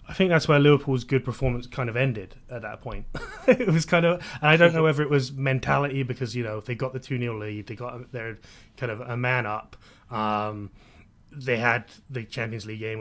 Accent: British